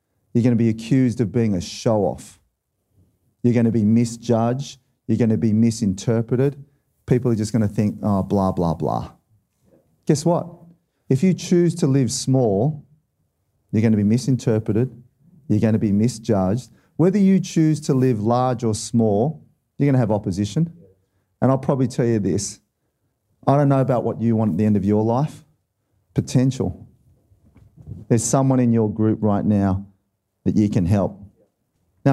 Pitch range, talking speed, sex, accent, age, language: 110-135 Hz, 170 wpm, male, Australian, 40-59, English